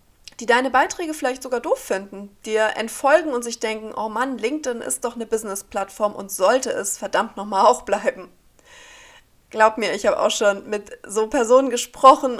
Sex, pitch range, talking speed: female, 205-270 Hz, 175 wpm